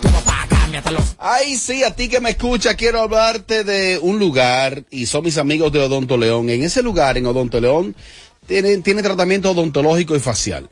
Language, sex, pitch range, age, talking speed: Spanish, male, 145-210 Hz, 30-49, 175 wpm